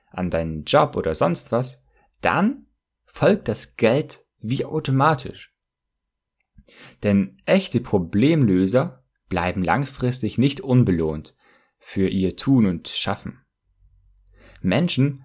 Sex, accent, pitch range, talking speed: male, German, 95-135 Hz, 100 wpm